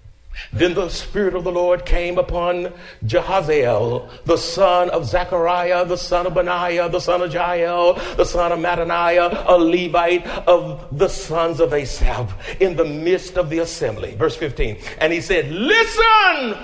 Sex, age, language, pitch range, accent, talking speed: male, 60-79, English, 170-270 Hz, American, 160 wpm